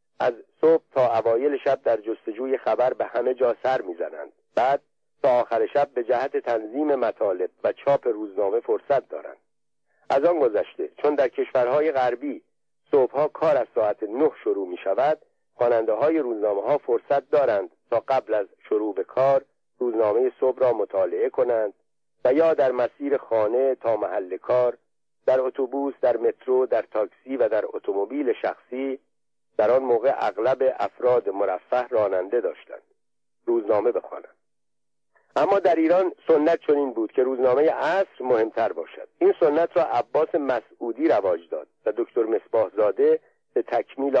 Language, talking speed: Persian, 145 wpm